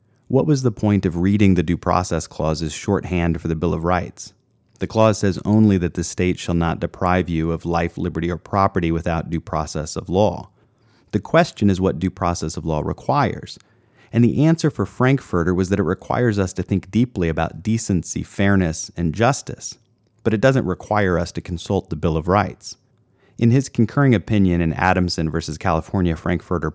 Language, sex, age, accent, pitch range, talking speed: English, male, 30-49, American, 85-110 Hz, 190 wpm